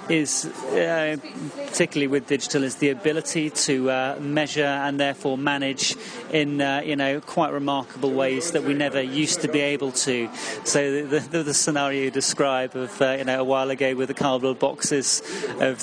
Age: 30-49